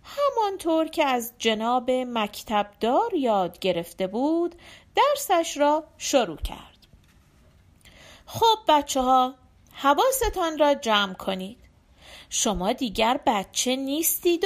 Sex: female